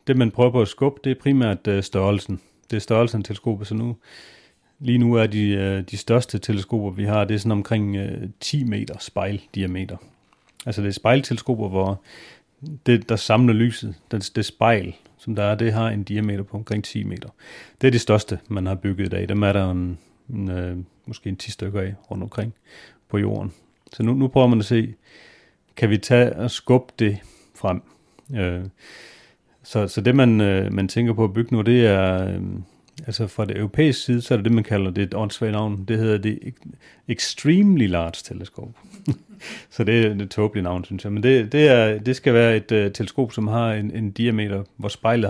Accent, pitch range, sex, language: native, 100-120 Hz, male, Danish